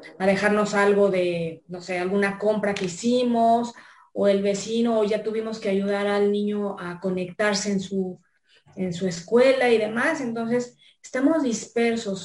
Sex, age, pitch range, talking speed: female, 30-49, 195-230 Hz, 155 wpm